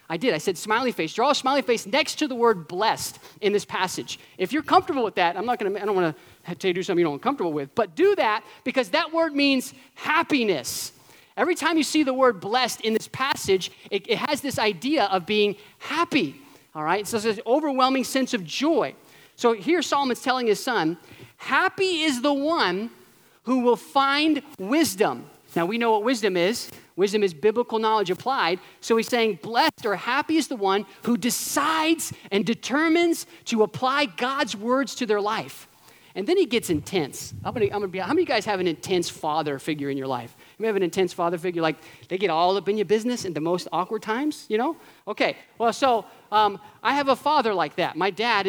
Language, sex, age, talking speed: English, male, 30-49, 210 wpm